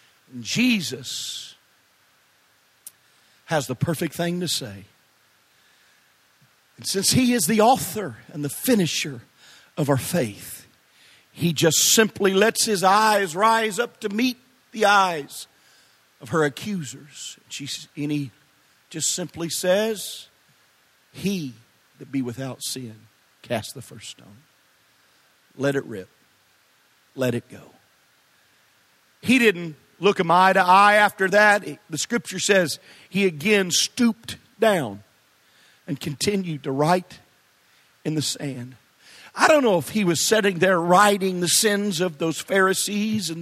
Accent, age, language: American, 50-69, English